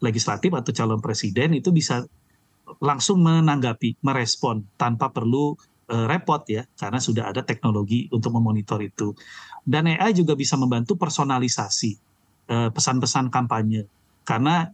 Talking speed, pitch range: 125 wpm, 115-155 Hz